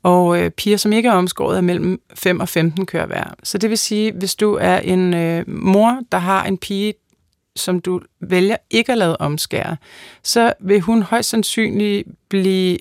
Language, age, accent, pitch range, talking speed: Danish, 30-49, native, 175-210 Hz, 185 wpm